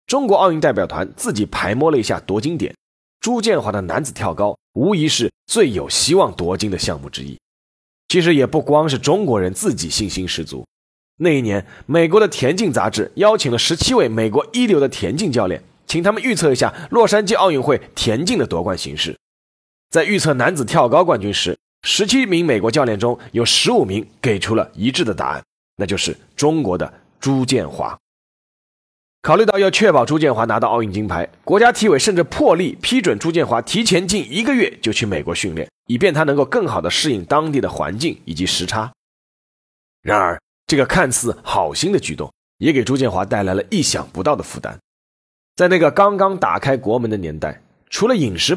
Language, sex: Chinese, male